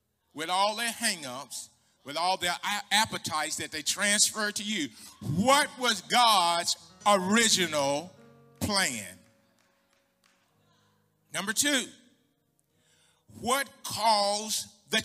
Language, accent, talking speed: English, American, 90 wpm